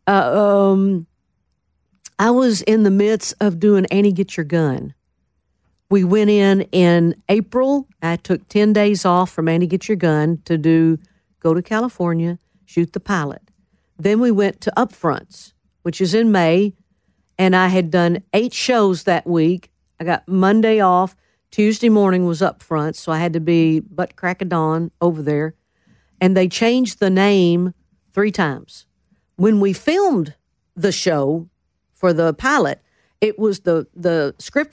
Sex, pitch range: female, 170-210 Hz